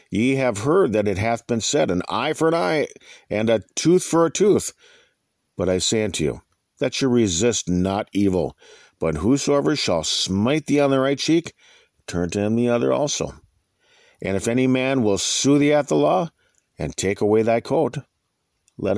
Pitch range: 95-140 Hz